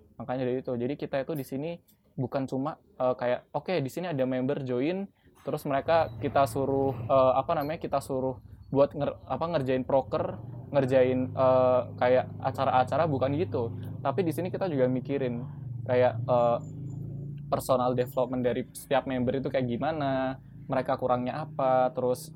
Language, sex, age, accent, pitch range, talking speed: Indonesian, male, 20-39, native, 120-140 Hz, 160 wpm